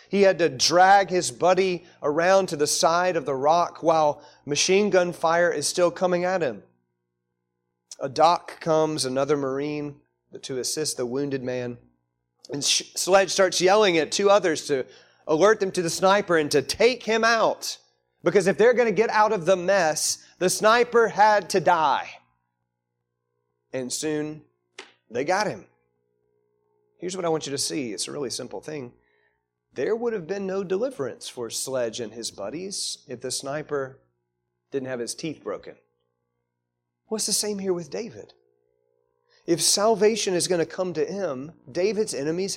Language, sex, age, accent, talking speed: English, male, 30-49, American, 165 wpm